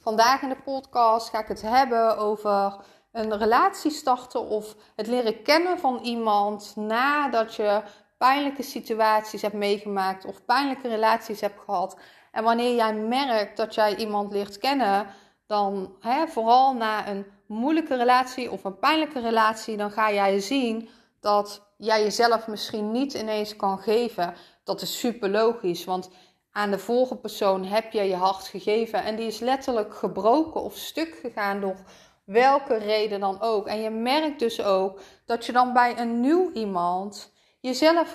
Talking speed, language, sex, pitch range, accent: 155 wpm, Dutch, female, 205-255 Hz, Dutch